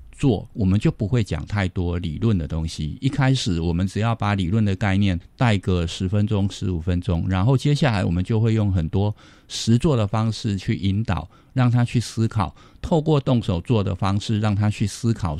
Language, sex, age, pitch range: Chinese, male, 50-69, 90-115 Hz